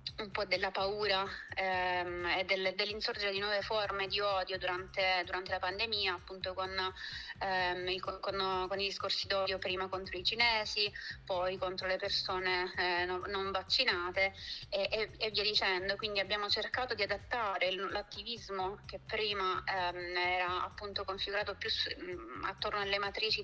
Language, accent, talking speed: Italian, native, 155 wpm